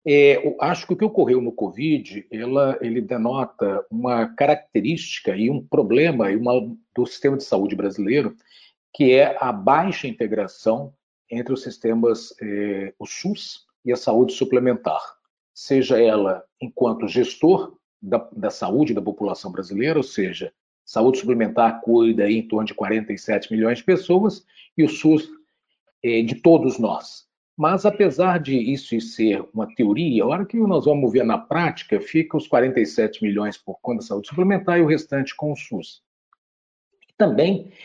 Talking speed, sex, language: 145 wpm, male, Portuguese